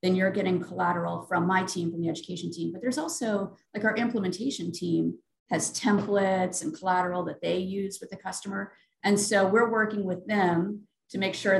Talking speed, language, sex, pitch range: 190 wpm, English, female, 170-200 Hz